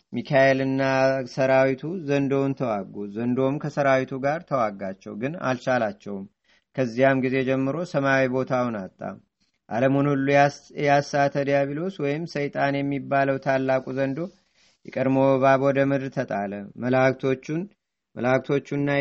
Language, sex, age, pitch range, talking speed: Amharic, male, 30-49, 135-145 Hz, 95 wpm